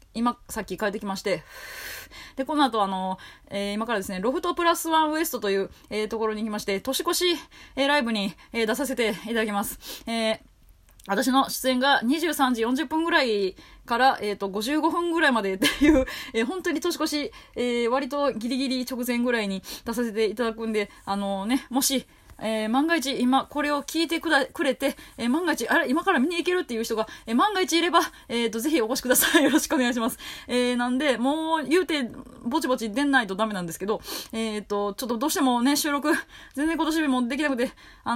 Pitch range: 225-315 Hz